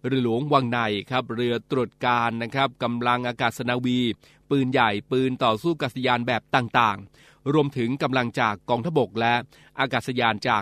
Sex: male